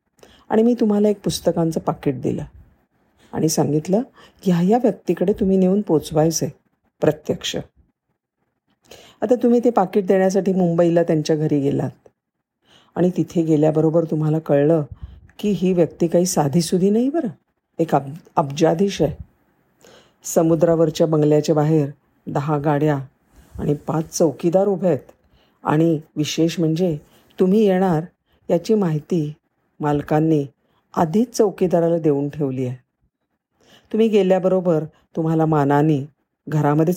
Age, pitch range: 50-69, 145-185 Hz